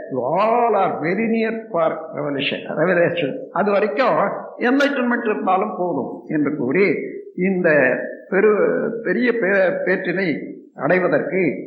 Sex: male